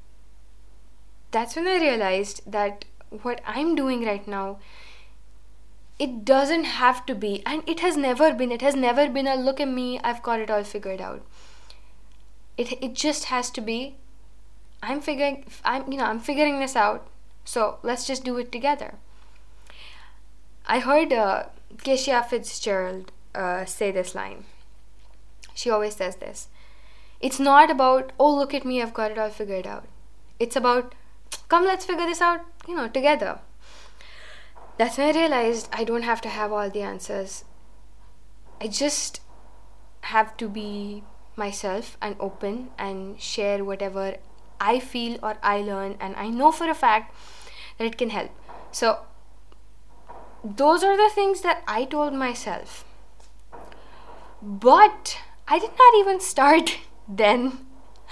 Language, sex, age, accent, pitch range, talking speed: English, female, 10-29, Indian, 205-290 Hz, 150 wpm